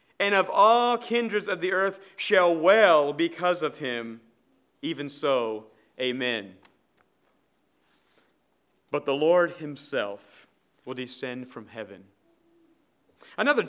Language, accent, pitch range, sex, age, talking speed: English, American, 130-195 Hz, male, 40-59, 105 wpm